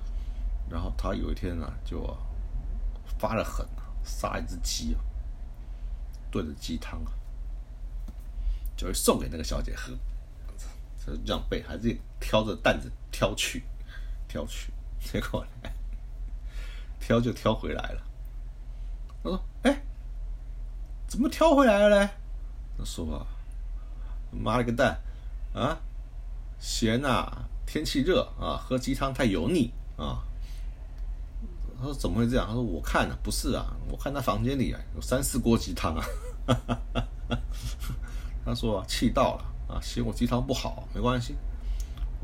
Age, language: 50-69, Chinese